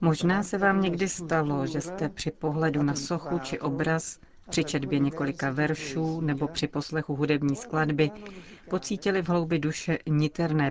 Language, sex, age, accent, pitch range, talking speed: Czech, female, 40-59, native, 145-165 Hz, 150 wpm